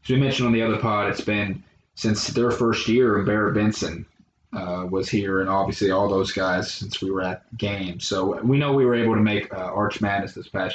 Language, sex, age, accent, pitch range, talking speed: English, male, 20-39, American, 95-115 Hz, 230 wpm